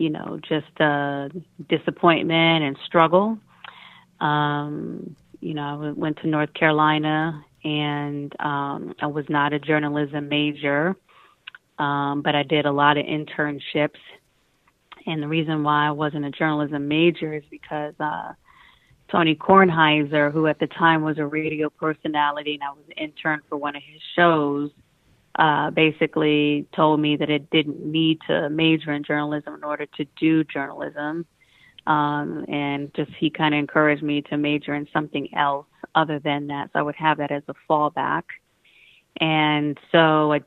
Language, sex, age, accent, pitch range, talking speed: English, female, 30-49, American, 145-160 Hz, 160 wpm